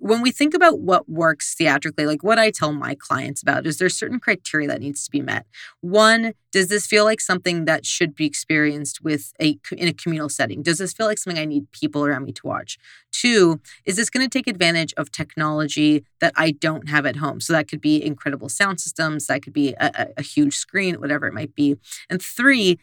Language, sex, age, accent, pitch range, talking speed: English, female, 30-49, American, 150-185 Hz, 225 wpm